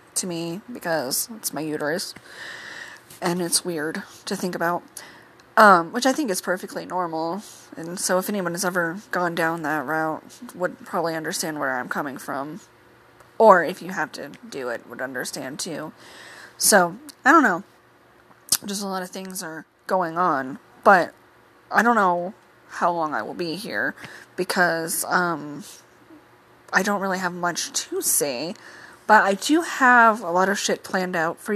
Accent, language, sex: American, English, female